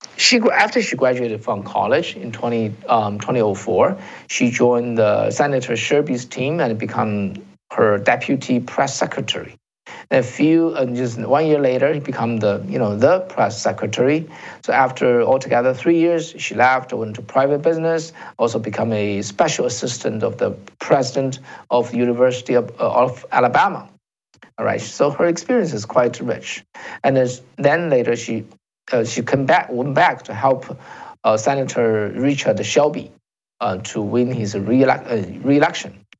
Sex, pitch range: male, 115-145 Hz